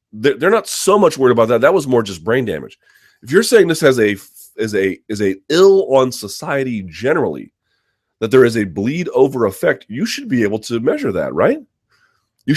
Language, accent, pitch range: English, American, 100-150 Hz